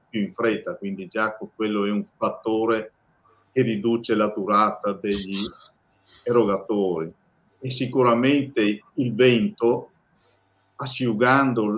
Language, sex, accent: Italian, male, native